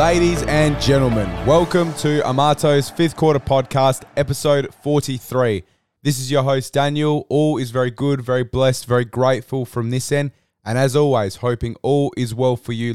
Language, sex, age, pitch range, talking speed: English, male, 20-39, 115-135 Hz, 165 wpm